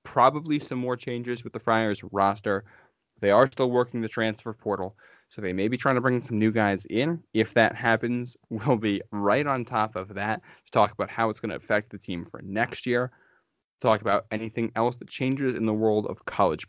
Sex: male